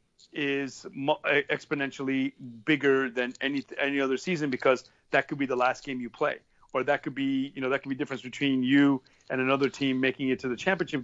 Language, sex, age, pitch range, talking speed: English, male, 40-59, 130-150 Hz, 200 wpm